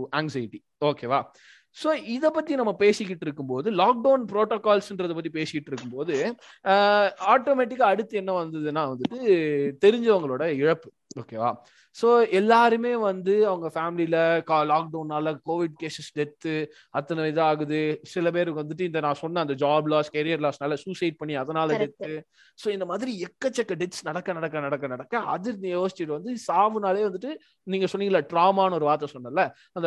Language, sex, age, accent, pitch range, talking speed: Tamil, male, 20-39, native, 155-220 Hz, 145 wpm